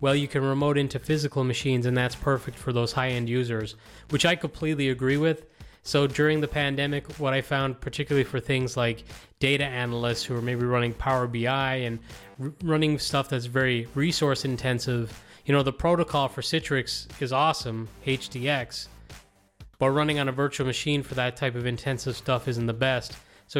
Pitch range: 120-140 Hz